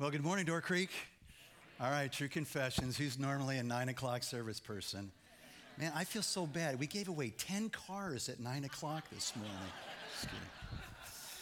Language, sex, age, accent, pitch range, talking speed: English, male, 50-69, American, 120-145 Hz, 165 wpm